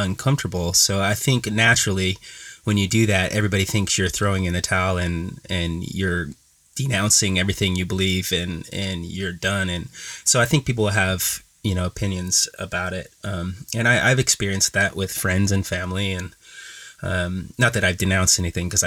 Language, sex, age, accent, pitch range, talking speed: English, male, 30-49, American, 90-105 Hz, 180 wpm